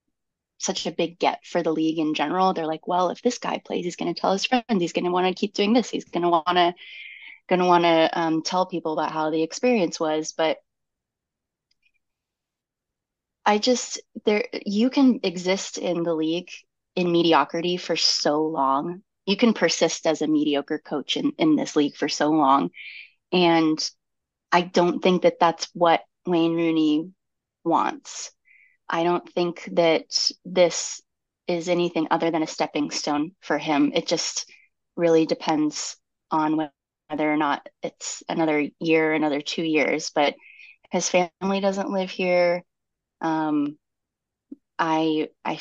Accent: American